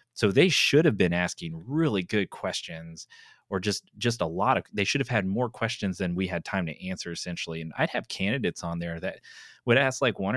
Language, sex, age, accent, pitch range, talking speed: English, male, 30-49, American, 90-125 Hz, 225 wpm